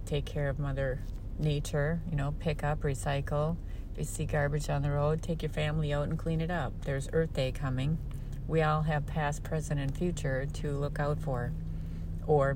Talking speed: 195 wpm